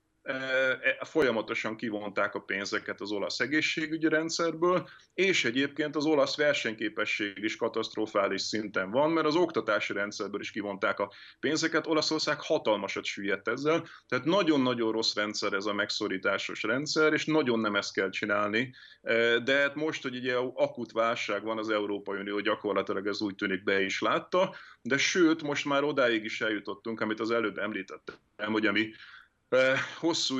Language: Hungarian